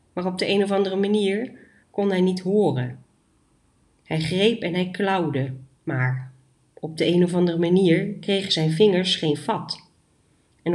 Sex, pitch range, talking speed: female, 155-195 Hz, 160 wpm